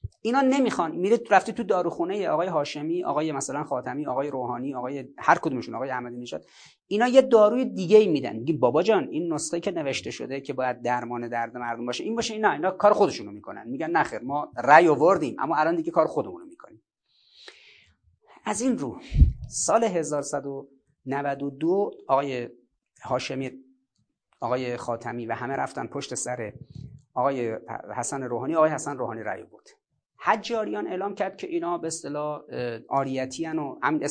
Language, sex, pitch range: Persian, male, 125-175 Hz